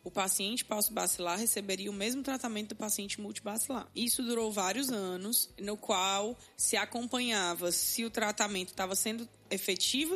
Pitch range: 205-245 Hz